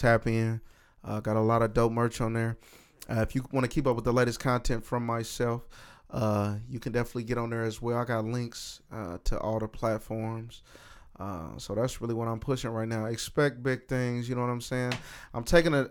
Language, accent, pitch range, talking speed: English, American, 115-130 Hz, 225 wpm